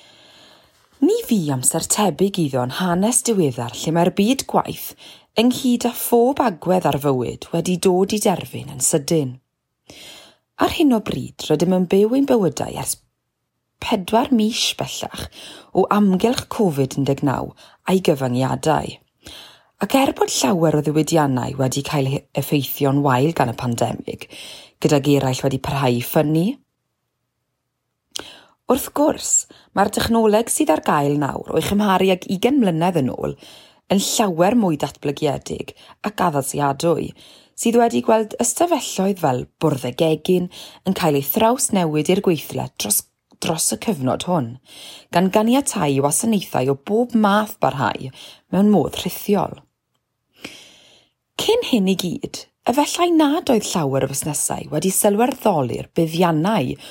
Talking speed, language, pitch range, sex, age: 130 wpm, English, 145-220 Hz, female, 30-49